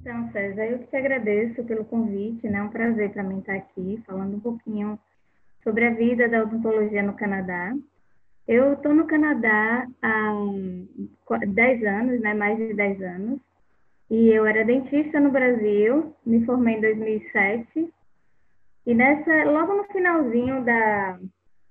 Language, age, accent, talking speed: Portuguese, 10-29, Brazilian, 150 wpm